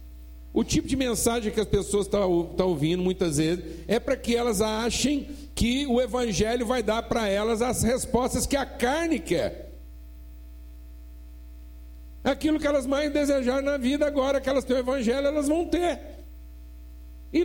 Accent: Brazilian